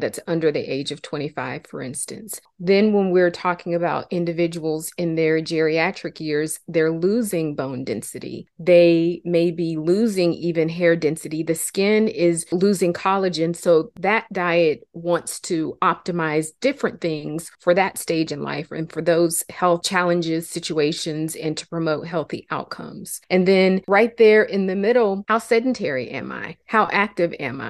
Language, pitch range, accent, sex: English, 160-190 Hz, American, female